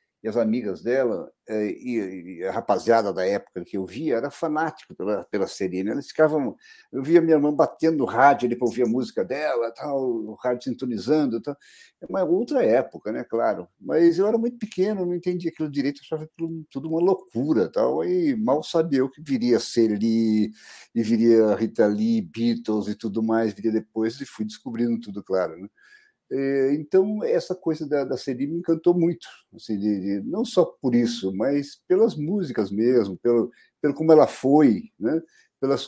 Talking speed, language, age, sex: 180 wpm, Portuguese, 60-79, male